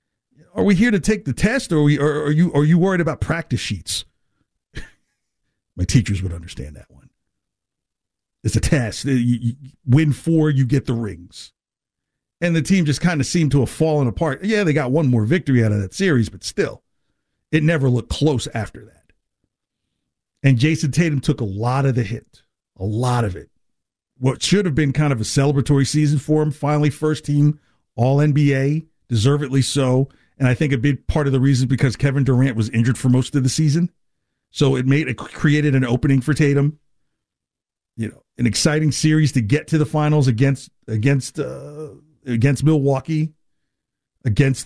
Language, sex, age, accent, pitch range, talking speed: English, male, 50-69, American, 130-155 Hz, 180 wpm